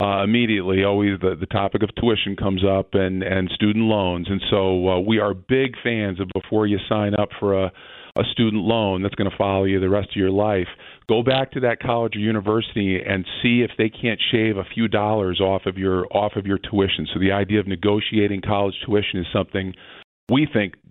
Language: English